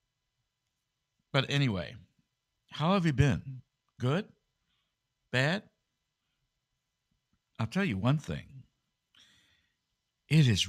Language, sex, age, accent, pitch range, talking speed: English, male, 60-79, American, 90-135 Hz, 85 wpm